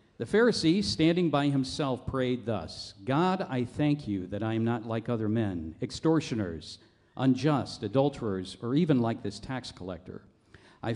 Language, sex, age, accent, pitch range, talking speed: English, male, 50-69, American, 110-155 Hz, 155 wpm